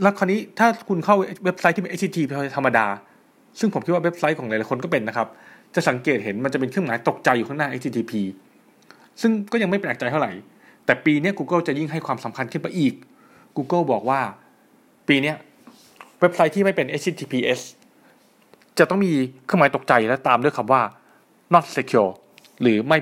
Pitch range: 130-190 Hz